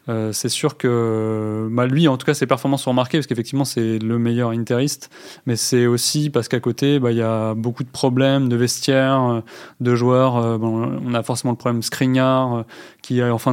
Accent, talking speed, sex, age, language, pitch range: French, 215 wpm, male, 20-39, French, 120-140 Hz